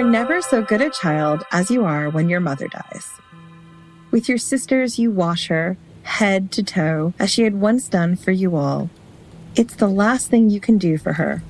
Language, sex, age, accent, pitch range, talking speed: English, female, 30-49, American, 170-225 Hz, 210 wpm